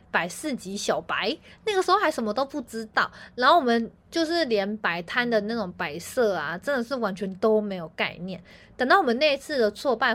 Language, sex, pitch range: Chinese, female, 200-285 Hz